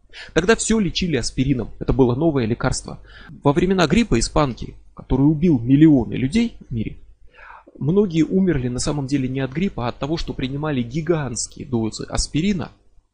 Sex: male